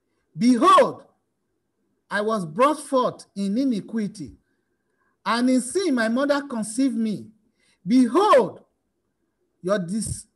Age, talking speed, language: 50-69, 95 wpm, English